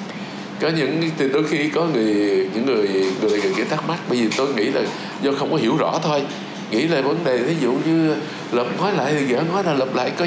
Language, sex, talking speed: Vietnamese, male, 245 wpm